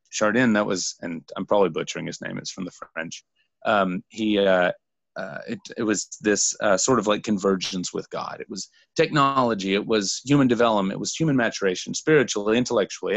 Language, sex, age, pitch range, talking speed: English, male, 30-49, 95-130 Hz, 185 wpm